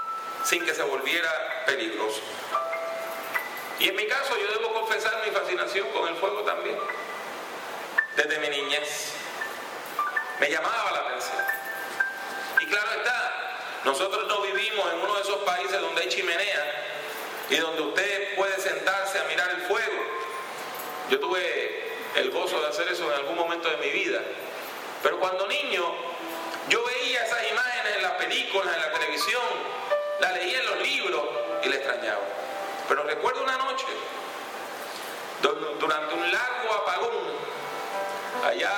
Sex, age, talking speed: male, 40-59, 140 wpm